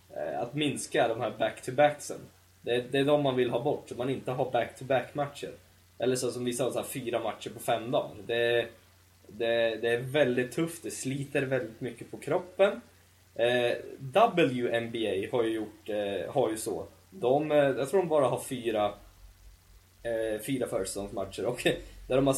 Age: 20-39